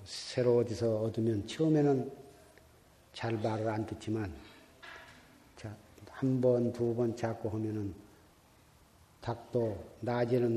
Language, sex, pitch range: Korean, male, 110-135 Hz